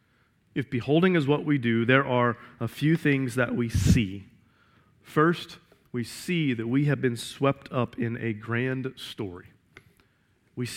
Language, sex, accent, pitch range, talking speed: English, male, American, 115-135 Hz, 155 wpm